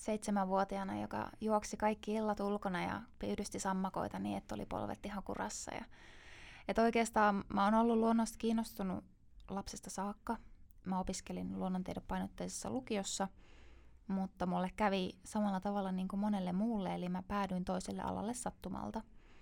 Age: 20-39